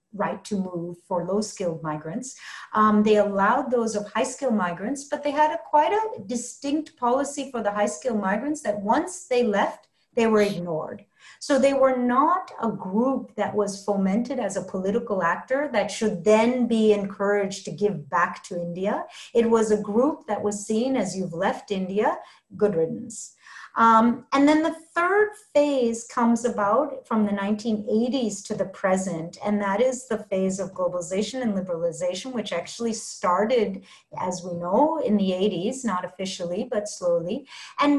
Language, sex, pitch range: English, female, 195-260 Hz